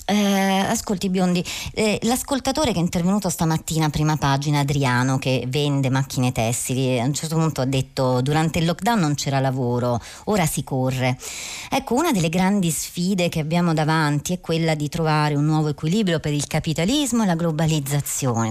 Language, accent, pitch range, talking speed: Italian, native, 145-180 Hz, 170 wpm